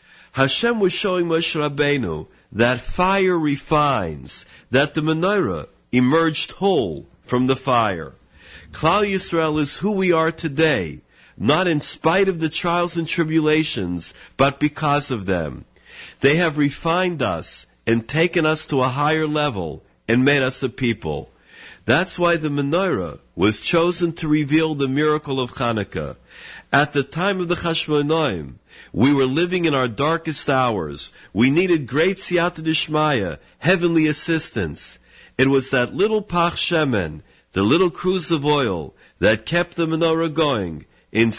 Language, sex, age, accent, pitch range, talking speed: English, male, 50-69, American, 120-165 Hz, 145 wpm